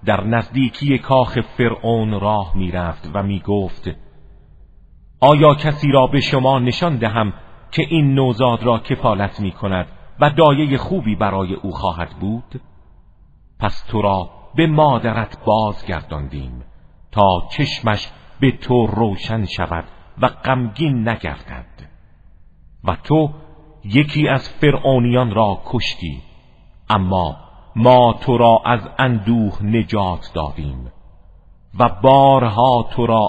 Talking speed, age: 115 wpm, 50-69